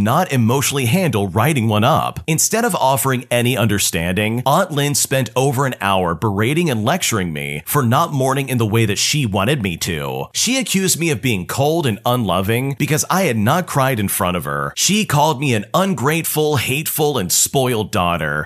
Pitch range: 105-145 Hz